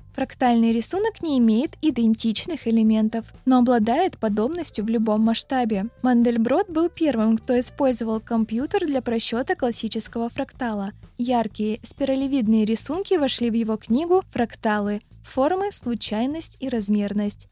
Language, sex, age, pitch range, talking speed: Russian, female, 20-39, 220-260 Hz, 115 wpm